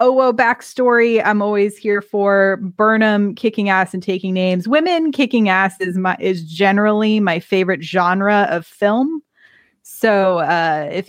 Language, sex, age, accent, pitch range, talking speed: English, female, 20-39, American, 185-225 Hz, 145 wpm